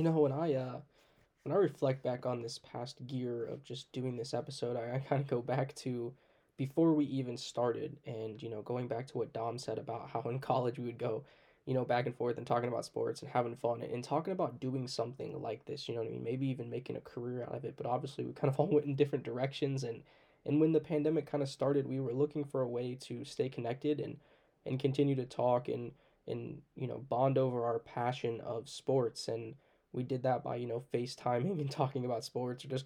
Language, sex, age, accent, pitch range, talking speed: English, male, 10-29, American, 120-140 Hz, 240 wpm